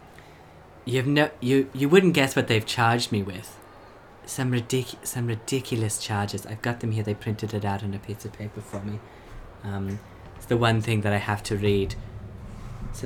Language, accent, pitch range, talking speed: English, British, 100-130 Hz, 195 wpm